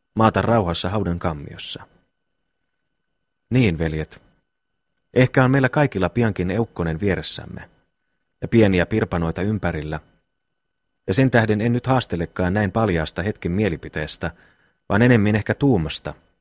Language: Finnish